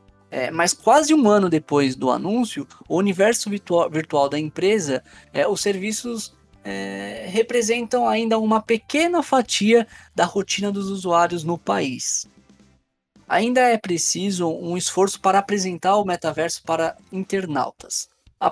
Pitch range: 155-210 Hz